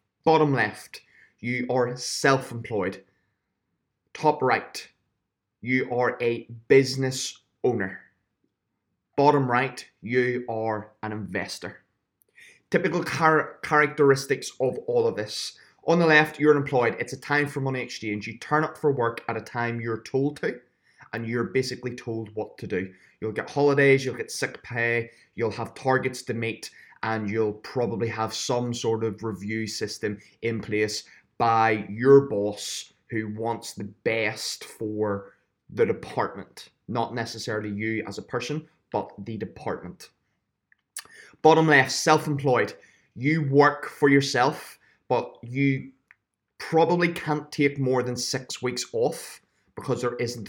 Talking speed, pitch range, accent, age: 135 wpm, 110-140 Hz, British, 20-39